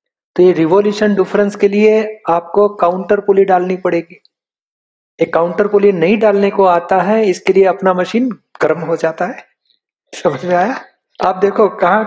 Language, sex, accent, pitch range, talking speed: Hindi, male, native, 170-200 Hz, 160 wpm